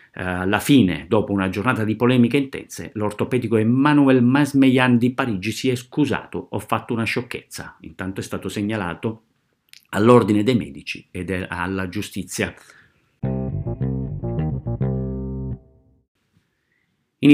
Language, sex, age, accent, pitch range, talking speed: Italian, male, 50-69, native, 100-130 Hz, 110 wpm